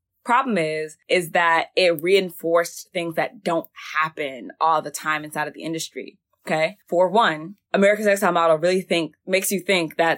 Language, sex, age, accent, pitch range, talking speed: English, female, 20-39, American, 155-180 Hz, 170 wpm